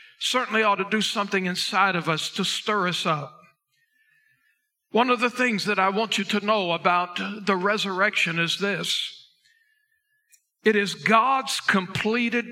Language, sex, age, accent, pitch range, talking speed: English, male, 60-79, American, 180-240 Hz, 150 wpm